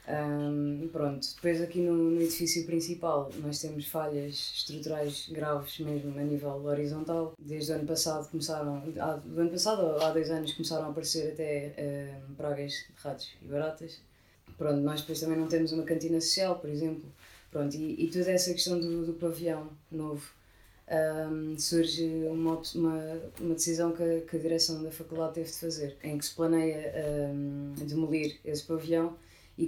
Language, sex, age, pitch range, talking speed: Portuguese, female, 20-39, 150-165 Hz, 175 wpm